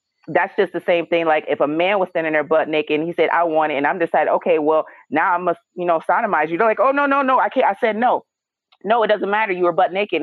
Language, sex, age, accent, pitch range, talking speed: English, female, 30-49, American, 150-185 Hz, 300 wpm